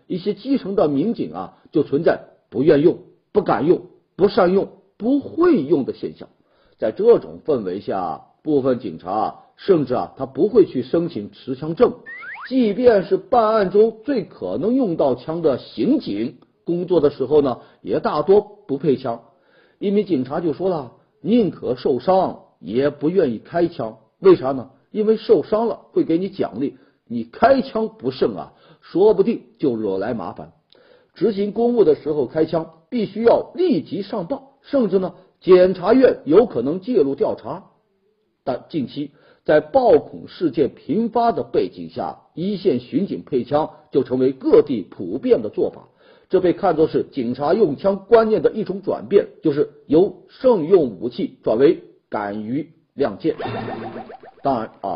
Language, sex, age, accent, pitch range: Chinese, male, 50-69, native, 160-255 Hz